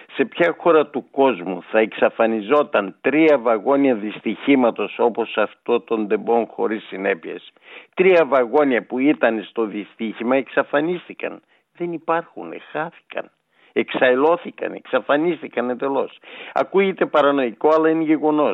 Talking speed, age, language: 110 wpm, 60-79, Greek